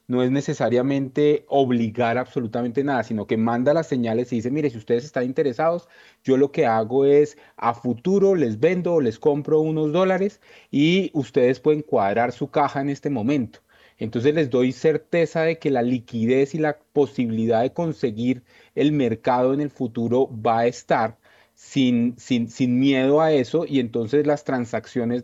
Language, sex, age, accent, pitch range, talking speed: Spanish, male, 30-49, Colombian, 125-155 Hz, 170 wpm